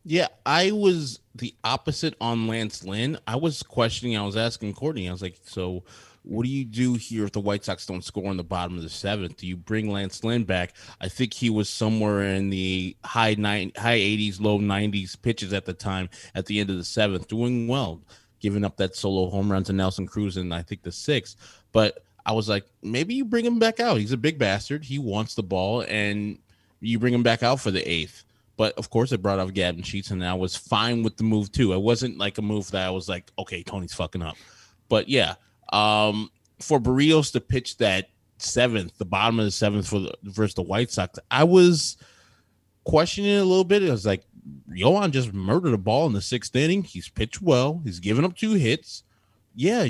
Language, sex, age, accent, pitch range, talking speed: English, male, 20-39, American, 95-125 Hz, 220 wpm